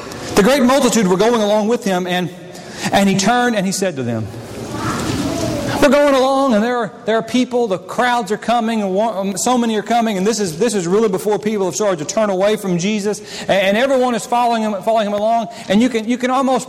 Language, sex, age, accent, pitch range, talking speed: English, male, 40-59, American, 205-260 Hz, 230 wpm